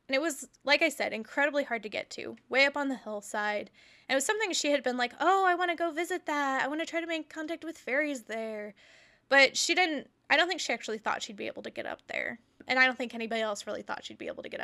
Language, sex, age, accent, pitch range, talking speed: English, female, 10-29, American, 220-290 Hz, 285 wpm